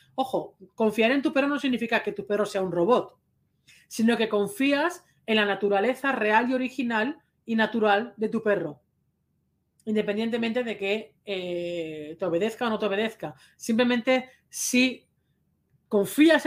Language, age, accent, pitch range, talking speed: Spanish, 40-59, Spanish, 190-250 Hz, 145 wpm